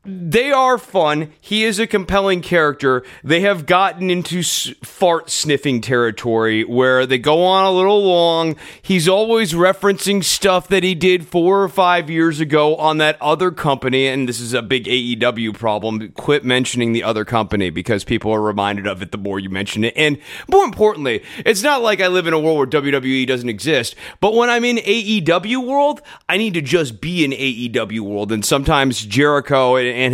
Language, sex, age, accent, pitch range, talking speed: English, male, 30-49, American, 130-195 Hz, 190 wpm